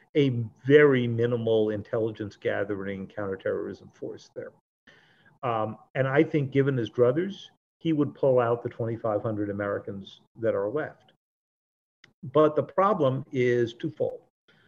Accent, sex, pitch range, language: American, male, 110-155 Hz, English